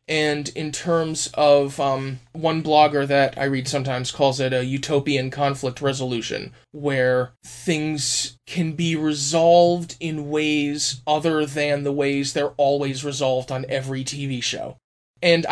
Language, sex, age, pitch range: English, male, 20-39, 135-165 Hz